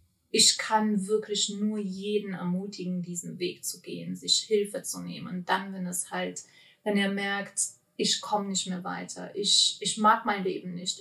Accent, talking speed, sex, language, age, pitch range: German, 180 wpm, female, German, 30-49, 185-220 Hz